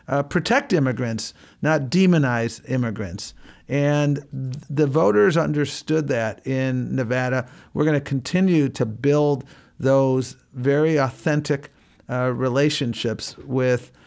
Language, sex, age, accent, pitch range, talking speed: English, male, 50-69, American, 130-150 Hz, 110 wpm